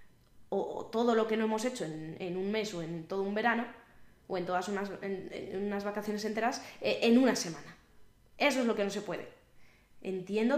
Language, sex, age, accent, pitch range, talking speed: Spanish, female, 20-39, Spanish, 190-235 Hz, 195 wpm